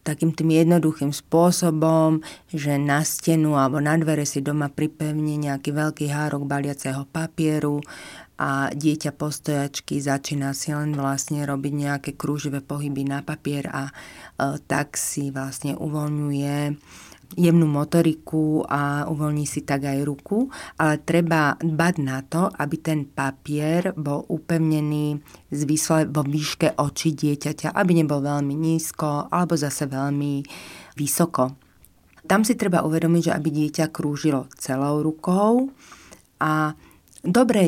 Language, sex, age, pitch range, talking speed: Slovak, female, 30-49, 145-165 Hz, 125 wpm